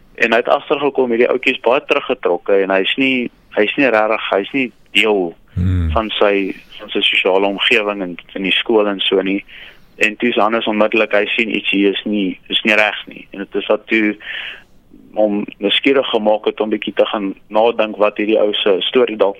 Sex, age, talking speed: male, 30-49, 215 wpm